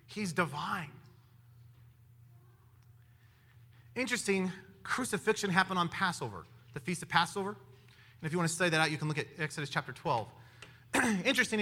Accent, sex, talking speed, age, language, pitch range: American, male, 140 wpm, 30-49, English, 140-195 Hz